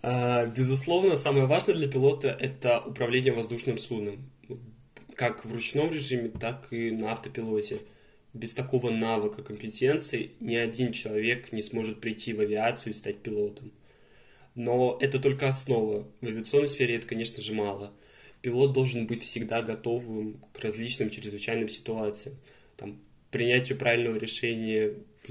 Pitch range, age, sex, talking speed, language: 105-125 Hz, 20-39, male, 140 wpm, Russian